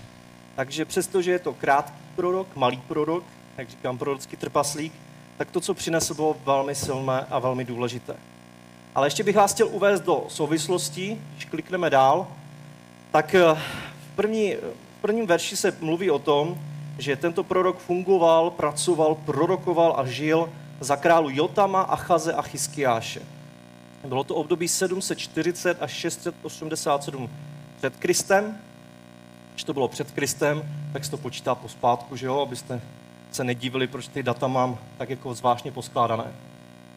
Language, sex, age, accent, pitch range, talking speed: Czech, male, 30-49, native, 130-170 Hz, 140 wpm